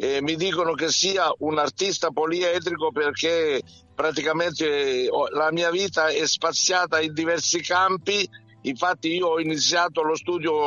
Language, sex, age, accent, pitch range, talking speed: Italian, male, 60-79, native, 150-175 Hz, 135 wpm